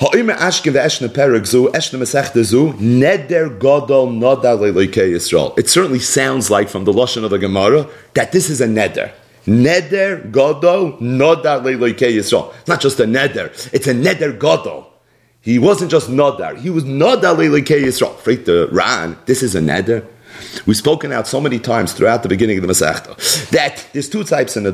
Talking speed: 135 wpm